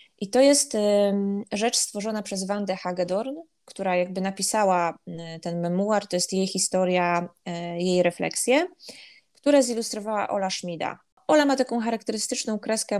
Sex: female